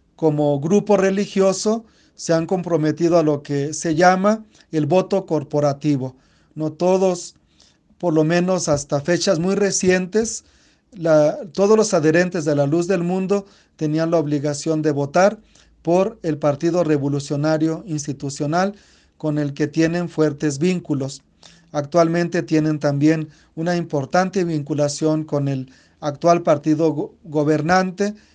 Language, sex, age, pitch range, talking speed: Spanish, male, 40-59, 150-180 Hz, 125 wpm